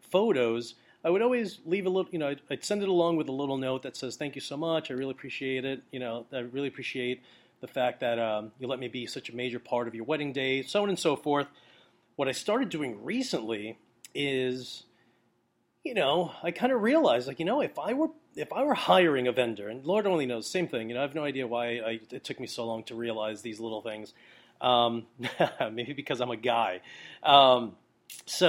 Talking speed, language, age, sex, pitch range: 230 wpm, English, 30-49, male, 120-150 Hz